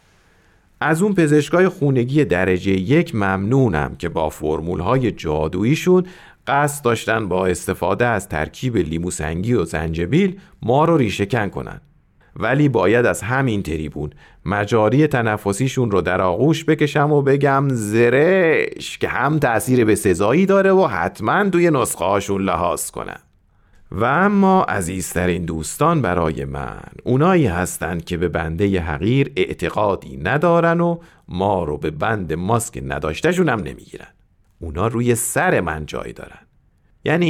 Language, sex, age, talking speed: Persian, male, 40-59, 130 wpm